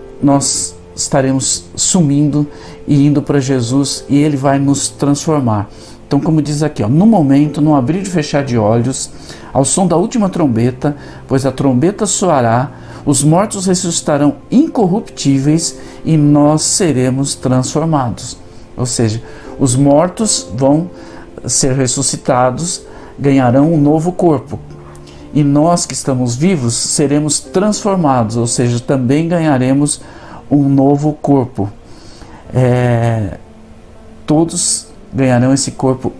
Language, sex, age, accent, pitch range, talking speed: Portuguese, male, 50-69, Brazilian, 120-155 Hz, 120 wpm